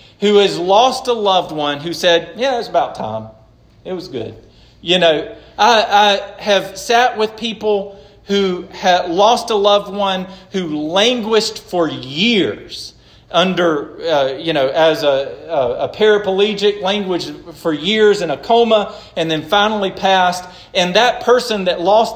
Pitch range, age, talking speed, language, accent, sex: 145-200 Hz, 40-59, 155 wpm, English, American, male